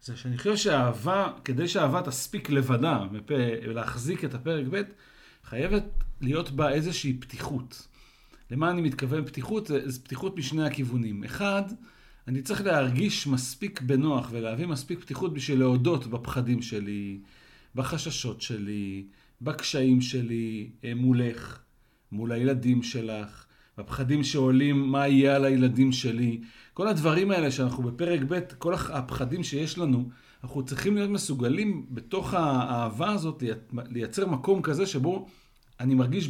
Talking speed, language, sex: 125 wpm, Hebrew, male